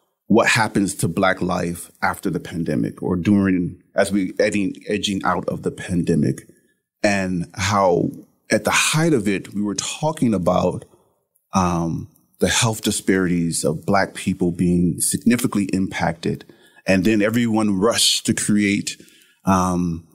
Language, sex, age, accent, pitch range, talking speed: English, male, 30-49, American, 95-105 Hz, 135 wpm